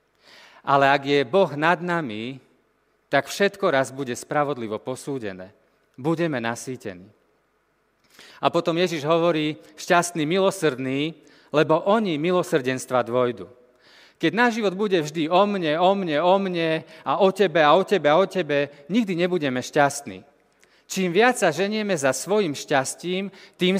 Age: 40-59